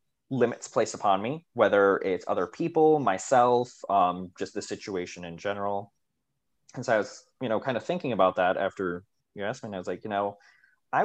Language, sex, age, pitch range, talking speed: English, male, 20-39, 95-135 Hz, 200 wpm